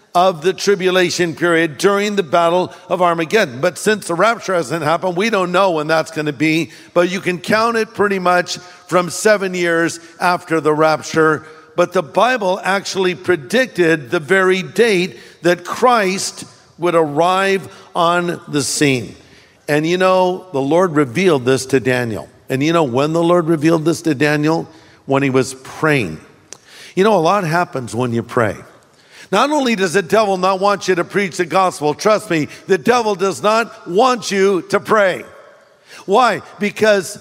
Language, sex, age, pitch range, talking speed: English, male, 50-69, 165-200 Hz, 170 wpm